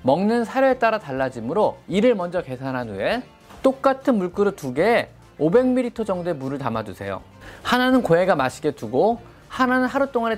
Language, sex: Korean, male